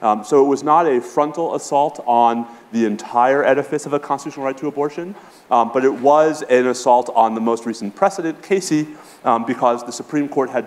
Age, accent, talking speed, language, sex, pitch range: 30-49, American, 200 wpm, English, male, 120-155 Hz